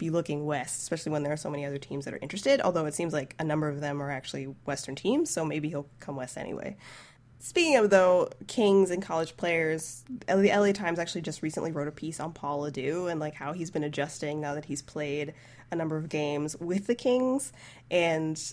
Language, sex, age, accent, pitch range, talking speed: English, female, 20-39, American, 150-190 Hz, 225 wpm